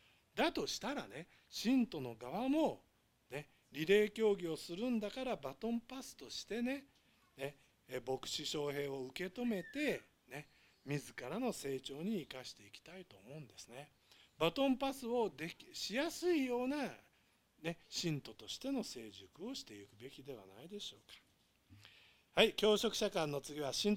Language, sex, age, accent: Japanese, male, 50-69, native